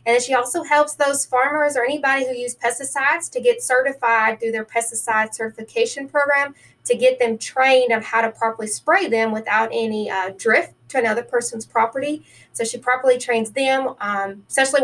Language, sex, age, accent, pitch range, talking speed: English, female, 20-39, American, 225-270 Hz, 180 wpm